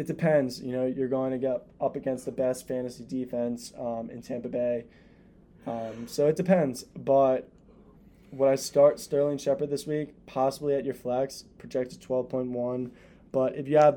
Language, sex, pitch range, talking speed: English, male, 125-150 Hz, 170 wpm